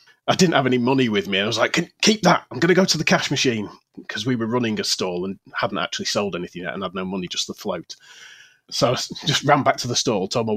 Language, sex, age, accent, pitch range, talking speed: English, male, 30-49, British, 105-140 Hz, 280 wpm